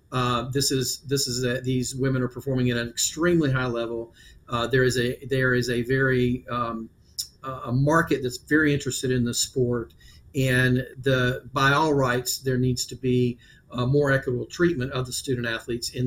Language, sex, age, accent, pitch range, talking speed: English, male, 40-59, American, 125-140 Hz, 185 wpm